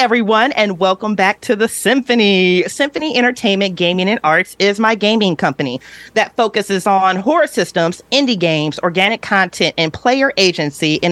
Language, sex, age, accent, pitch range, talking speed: English, female, 40-59, American, 175-230 Hz, 155 wpm